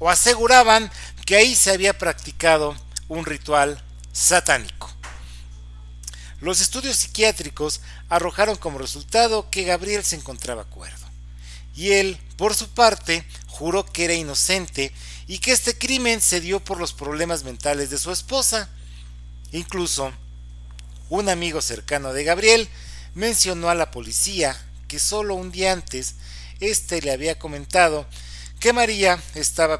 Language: Spanish